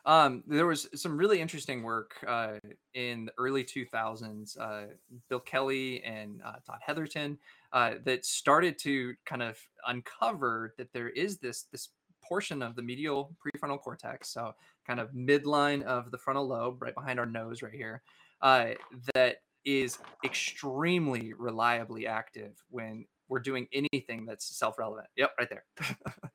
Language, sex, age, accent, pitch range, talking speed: English, male, 20-39, American, 115-140 Hz, 150 wpm